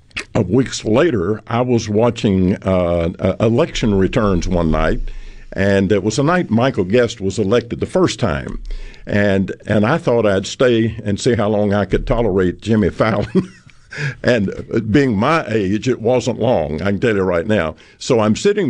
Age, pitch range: 50-69, 100-125 Hz